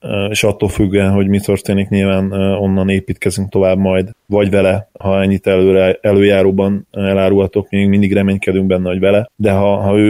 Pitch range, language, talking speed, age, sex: 95-110 Hz, Hungarian, 165 wpm, 20-39, male